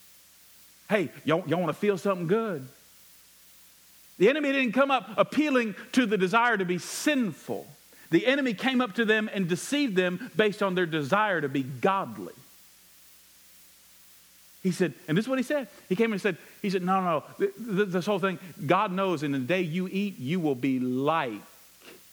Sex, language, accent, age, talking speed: male, English, American, 50-69, 180 wpm